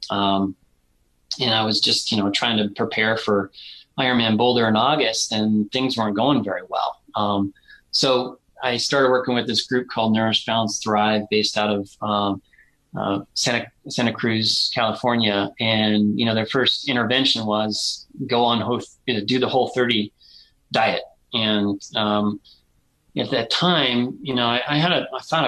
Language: English